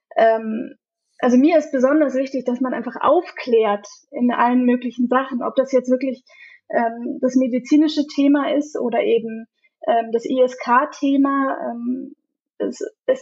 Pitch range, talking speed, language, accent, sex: 230-275 Hz, 130 wpm, German, German, female